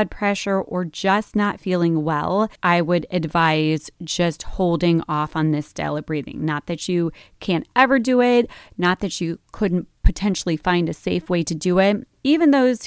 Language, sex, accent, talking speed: English, female, American, 175 wpm